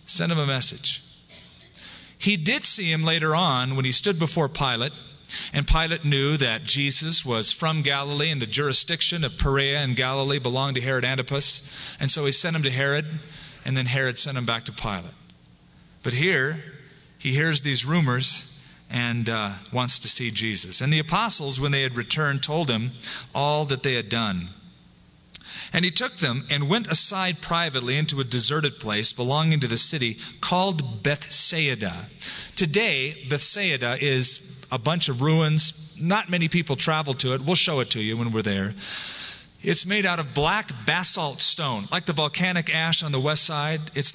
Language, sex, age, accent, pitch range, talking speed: English, male, 40-59, American, 125-160 Hz, 175 wpm